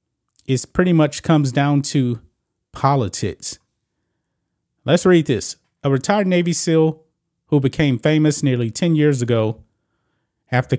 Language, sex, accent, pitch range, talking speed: English, male, American, 125-160 Hz, 120 wpm